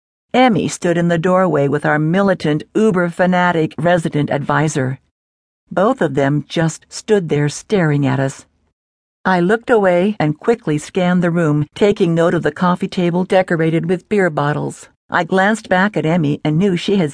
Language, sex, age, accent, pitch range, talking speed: English, female, 60-79, American, 155-190 Hz, 165 wpm